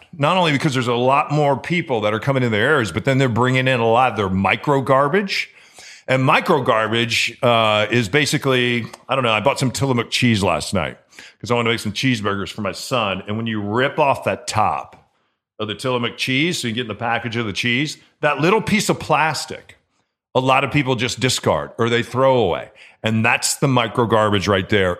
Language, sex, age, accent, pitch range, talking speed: English, male, 40-59, American, 110-140 Hz, 225 wpm